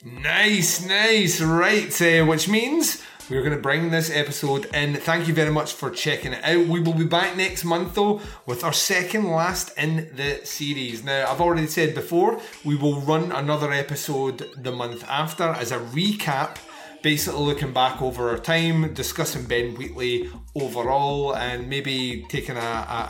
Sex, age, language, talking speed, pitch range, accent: male, 30-49, English, 170 wpm, 125-165 Hz, British